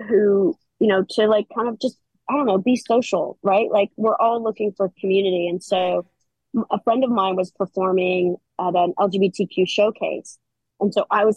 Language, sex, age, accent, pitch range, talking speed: English, female, 20-39, American, 180-210 Hz, 190 wpm